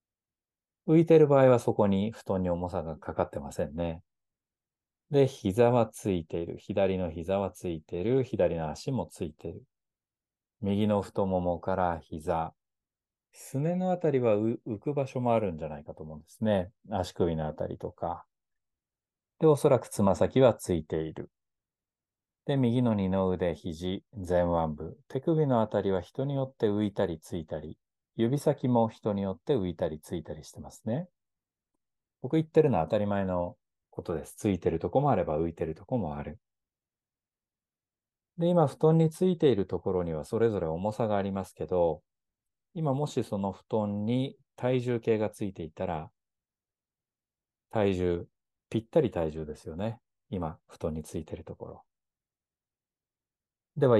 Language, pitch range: Japanese, 90-120 Hz